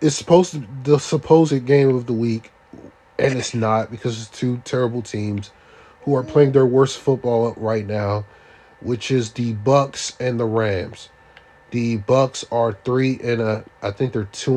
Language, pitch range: English, 110-140 Hz